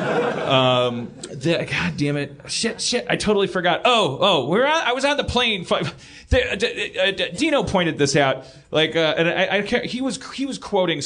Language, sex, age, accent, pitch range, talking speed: English, male, 30-49, American, 145-215 Hz, 185 wpm